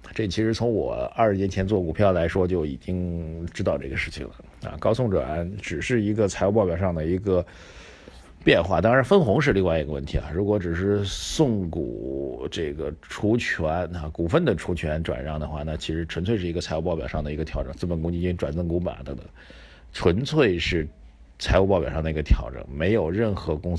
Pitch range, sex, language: 80-100 Hz, male, Chinese